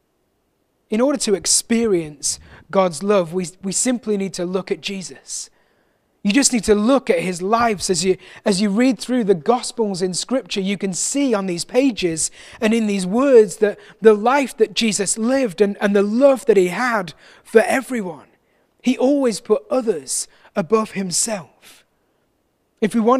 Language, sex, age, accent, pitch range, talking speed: English, male, 30-49, British, 185-225 Hz, 170 wpm